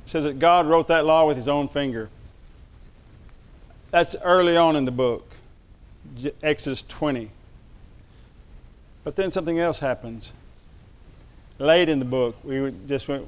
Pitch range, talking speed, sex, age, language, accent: 115-165 Hz, 135 wpm, male, 50-69, English, American